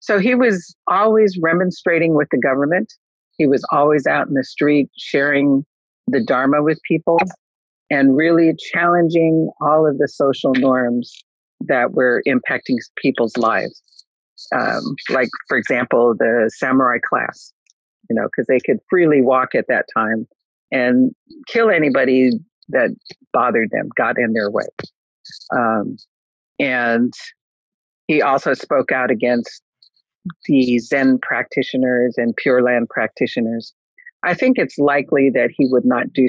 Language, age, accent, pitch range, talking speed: English, 50-69, American, 125-175 Hz, 135 wpm